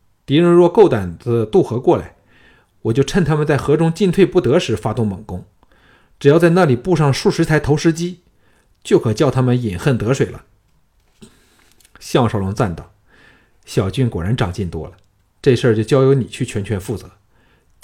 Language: Chinese